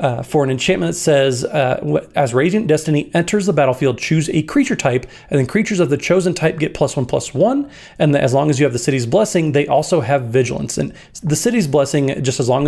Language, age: English, 30-49